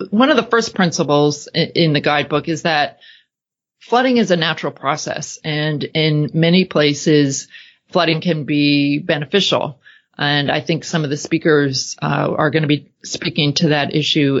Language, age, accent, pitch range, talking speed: English, 40-59, American, 145-170 Hz, 165 wpm